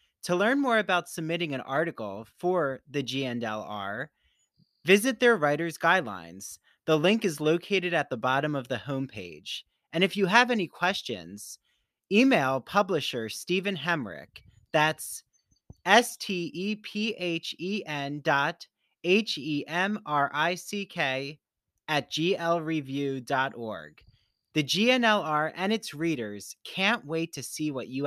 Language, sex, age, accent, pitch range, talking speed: English, male, 30-49, American, 130-185 Hz, 105 wpm